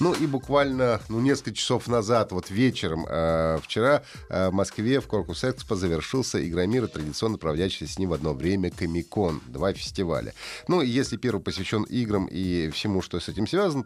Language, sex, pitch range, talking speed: Russian, male, 95-130 Hz, 175 wpm